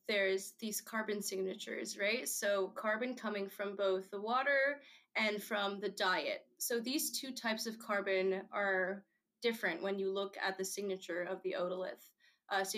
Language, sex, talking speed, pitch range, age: English, female, 165 wpm, 190-235 Hz, 20-39